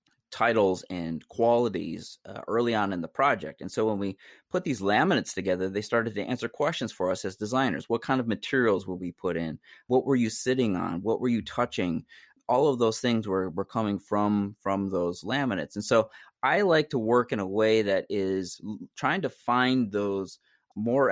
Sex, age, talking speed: male, 30-49, 200 wpm